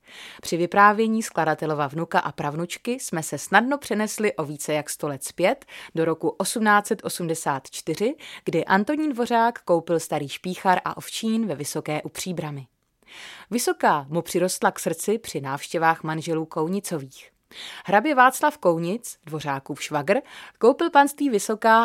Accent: native